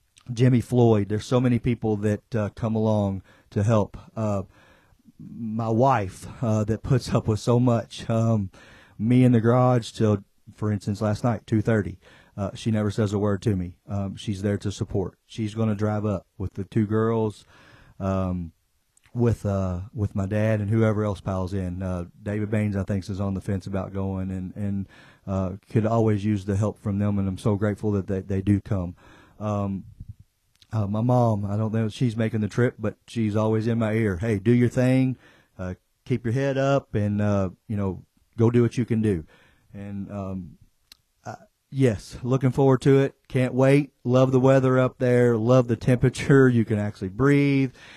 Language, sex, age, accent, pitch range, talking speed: English, male, 40-59, American, 100-120 Hz, 195 wpm